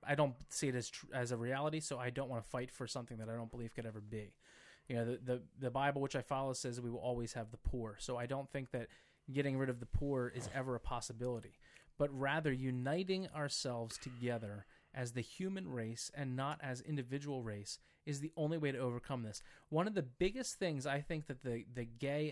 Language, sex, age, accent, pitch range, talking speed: English, male, 20-39, American, 125-155 Hz, 230 wpm